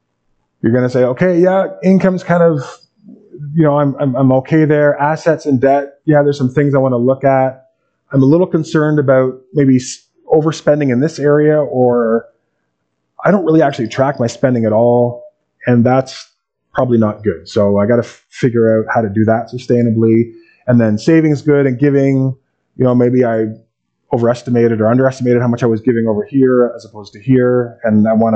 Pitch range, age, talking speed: 110-150 Hz, 20-39, 195 wpm